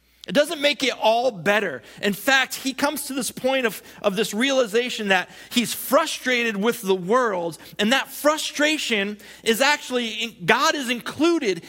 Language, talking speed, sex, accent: English, 165 wpm, male, American